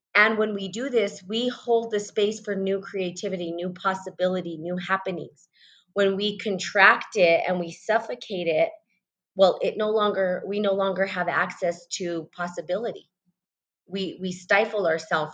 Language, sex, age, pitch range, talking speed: English, female, 30-49, 180-215 Hz, 155 wpm